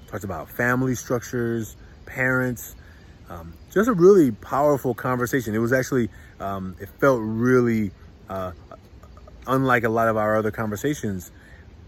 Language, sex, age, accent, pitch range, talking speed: English, male, 30-49, American, 95-130 Hz, 125 wpm